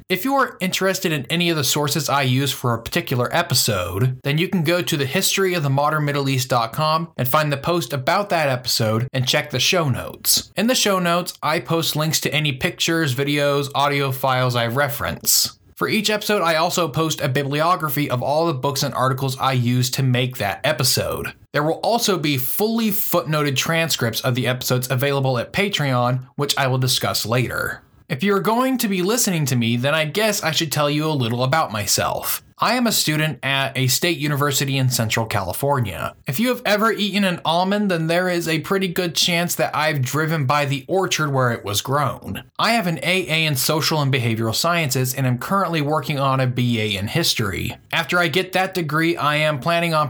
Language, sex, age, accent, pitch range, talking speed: English, male, 20-39, American, 130-170 Hz, 200 wpm